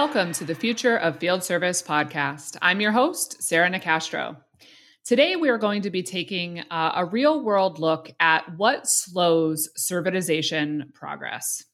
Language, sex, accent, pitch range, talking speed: English, female, American, 160-200 Hz, 150 wpm